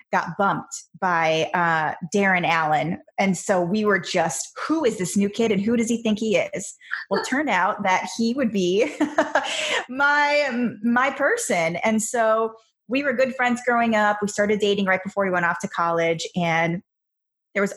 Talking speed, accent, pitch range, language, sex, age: 185 wpm, American, 175-215 Hz, English, female, 20-39